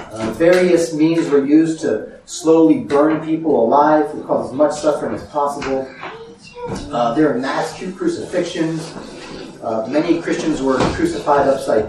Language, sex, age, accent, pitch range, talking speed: English, male, 40-59, American, 140-170 Hz, 140 wpm